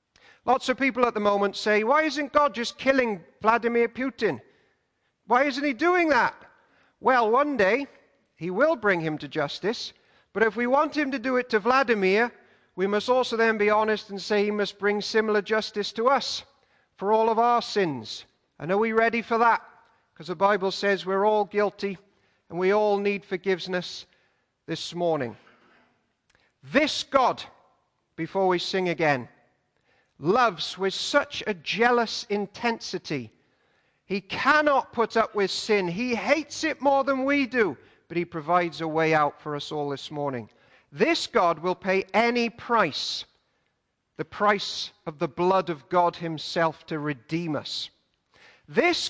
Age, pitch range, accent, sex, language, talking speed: 40-59, 185-240 Hz, British, male, English, 160 wpm